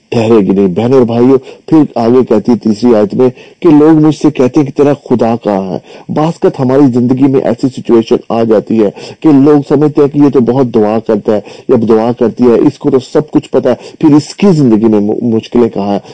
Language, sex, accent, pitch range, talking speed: English, male, Indian, 110-135 Hz, 210 wpm